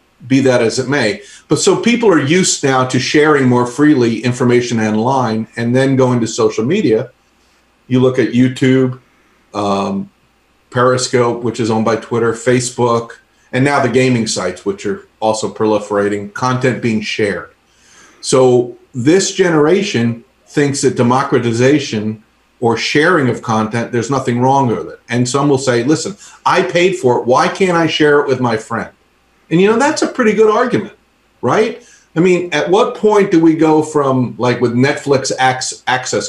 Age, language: 50-69, English